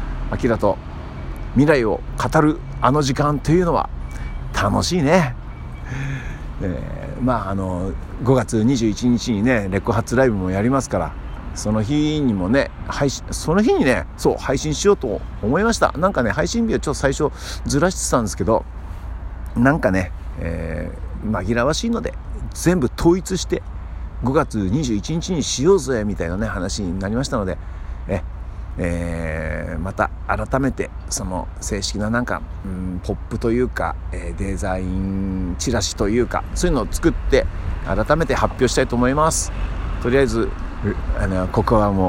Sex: male